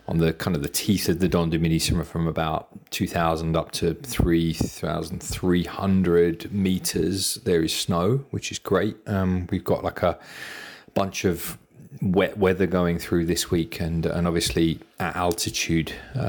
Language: English